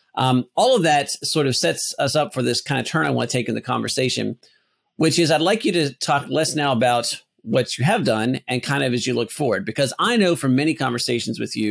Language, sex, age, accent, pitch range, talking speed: English, male, 40-59, American, 120-150 Hz, 255 wpm